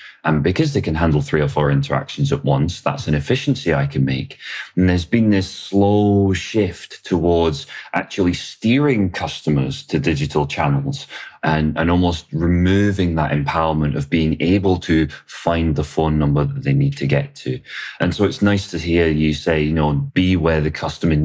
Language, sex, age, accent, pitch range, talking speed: English, male, 30-49, British, 75-100 Hz, 180 wpm